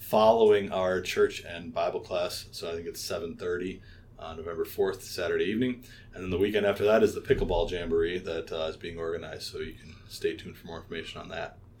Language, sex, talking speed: English, male, 215 wpm